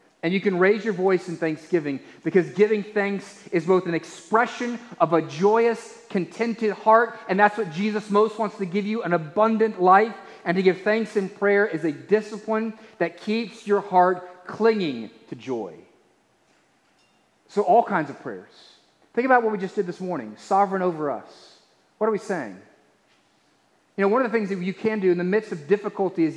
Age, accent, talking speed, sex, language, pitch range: 30-49, American, 190 wpm, male, English, 165-210 Hz